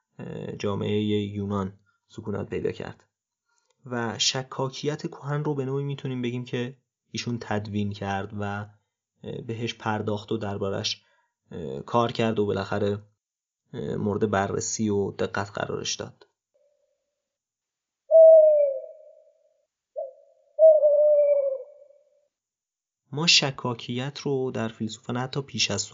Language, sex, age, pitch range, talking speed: Persian, male, 30-49, 105-140 Hz, 95 wpm